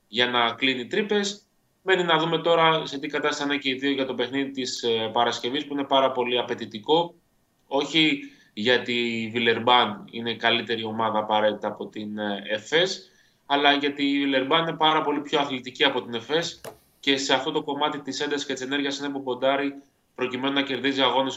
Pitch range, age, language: 120-150 Hz, 20-39, Greek